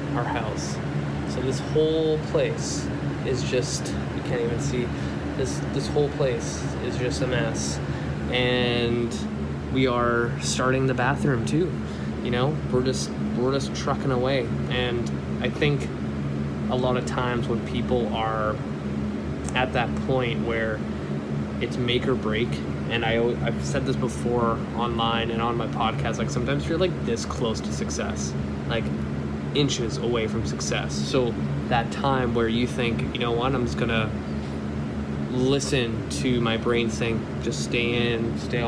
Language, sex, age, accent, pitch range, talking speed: English, male, 20-39, American, 70-120 Hz, 150 wpm